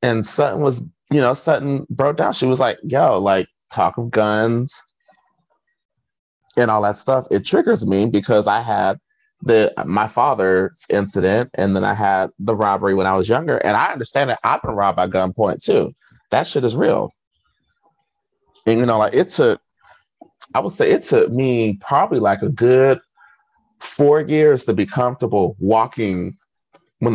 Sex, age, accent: male, 30-49, American